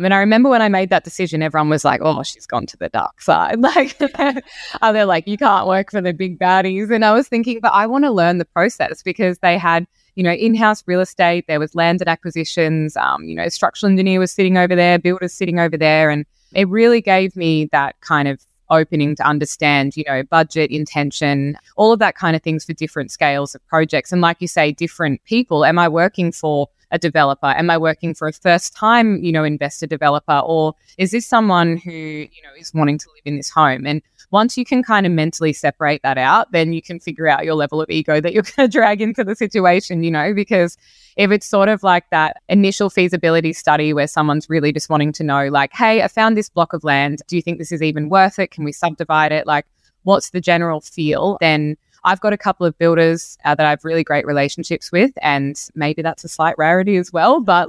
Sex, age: female, 20-39